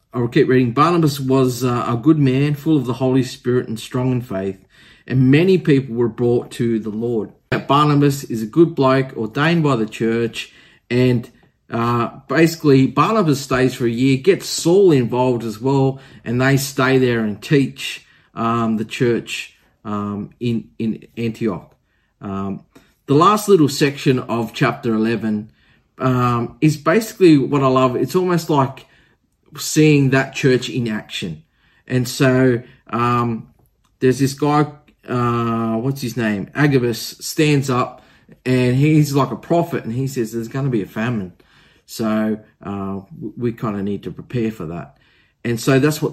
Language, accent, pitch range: English, Australian, 115-135 Hz